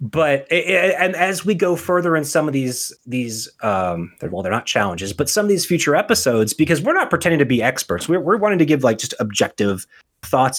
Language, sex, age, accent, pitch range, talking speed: English, male, 30-49, American, 115-160 Hz, 215 wpm